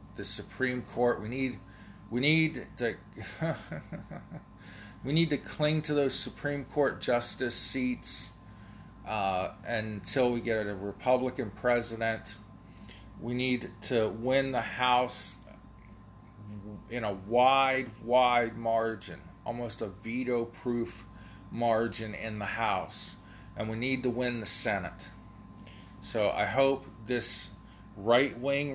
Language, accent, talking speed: English, American, 115 wpm